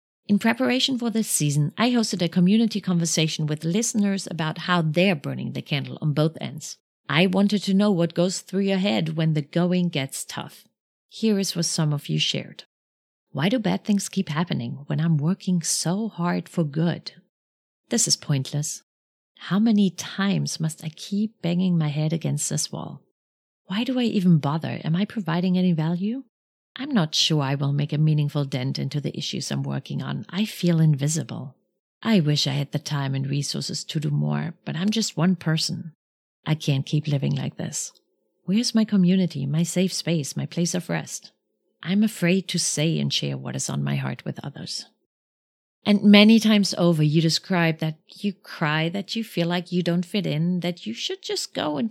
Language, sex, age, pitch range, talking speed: English, female, 30-49, 150-195 Hz, 190 wpm